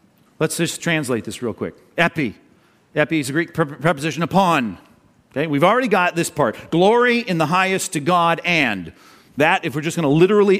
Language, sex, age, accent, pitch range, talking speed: English, male, 40-59, American, 145-195 Hz, 185 wpm